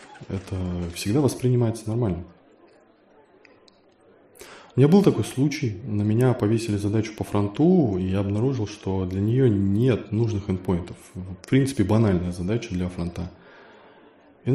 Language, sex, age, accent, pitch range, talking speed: Russian, male, 20-39, native, 95-125 Hz, 130 wpm